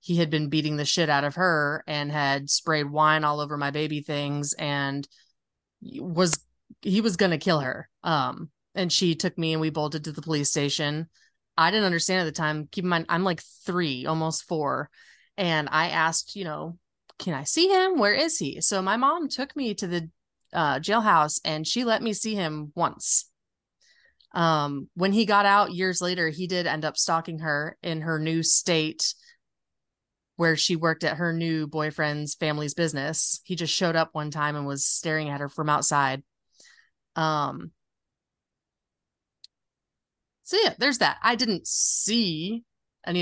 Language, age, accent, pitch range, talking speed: English, 30-49, American, 150-190 Hz, 180 wpm